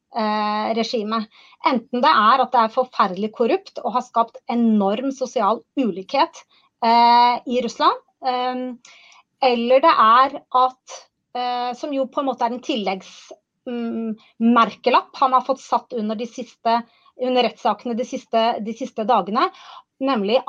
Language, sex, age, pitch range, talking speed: English, female, 30-49, 230-265 Hz, 145 wpm